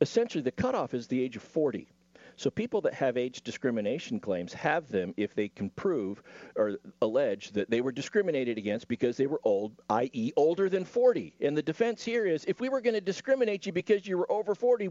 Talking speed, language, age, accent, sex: 215 wpm, English, 50-69, American, male